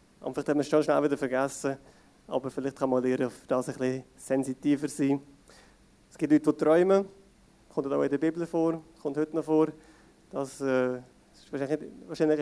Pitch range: 135-160 Hz